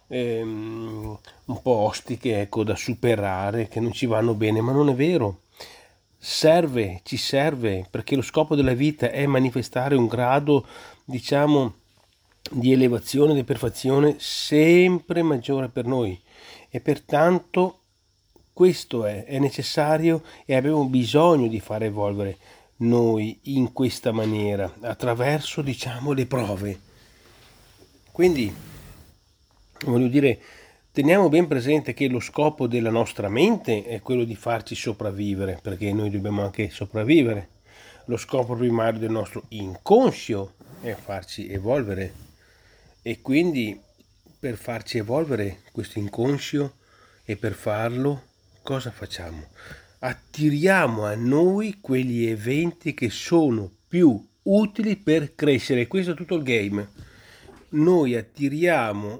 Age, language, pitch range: 40-59, Italian, 105-145 Hz